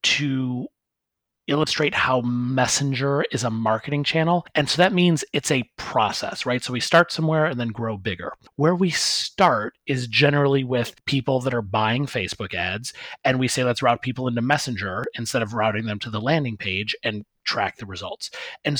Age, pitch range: 30-49, 115-145 Hz